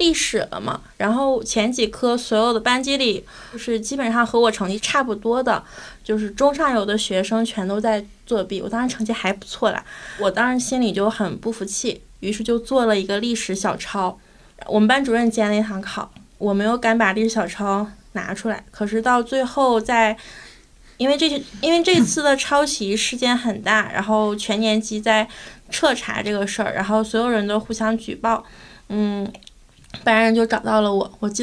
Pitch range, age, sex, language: 205-235 Hz, 20-39, female, Chinese